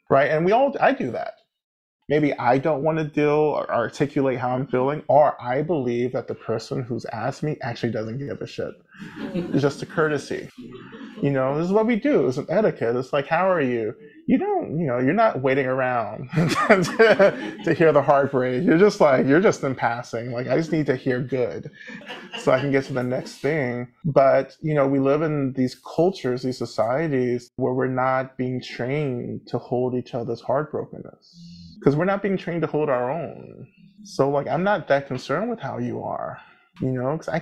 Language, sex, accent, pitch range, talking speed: English, male, American, 125-150 Hz, 205 wpm